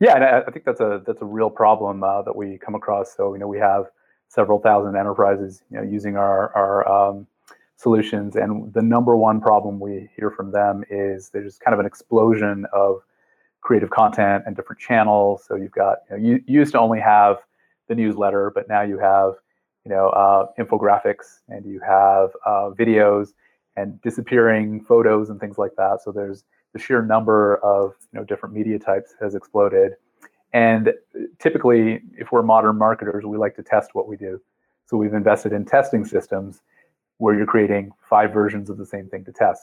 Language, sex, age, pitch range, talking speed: English, male, 30-49, 100-110 Hz, 190 wpm